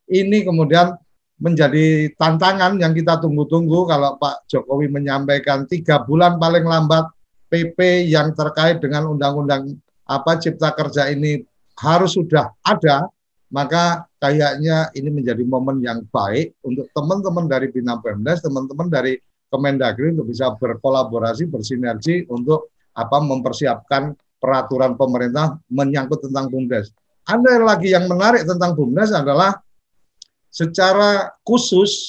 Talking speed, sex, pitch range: 120 wpm, male, 130-170 Hz